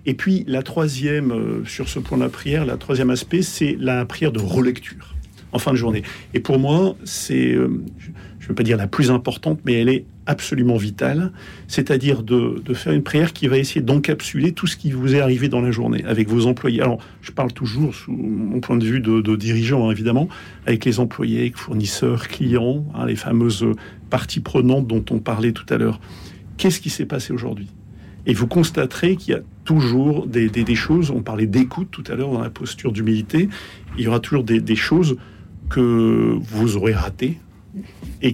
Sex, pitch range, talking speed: male, 110-140 Hz, 200 wpm